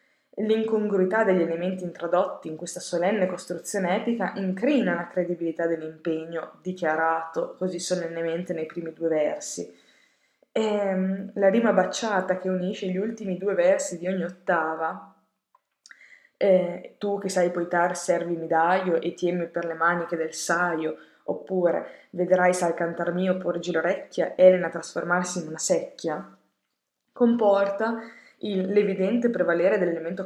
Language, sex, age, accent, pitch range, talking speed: Italian, female, 20-39, native, 170-190 Hz, 125 wpm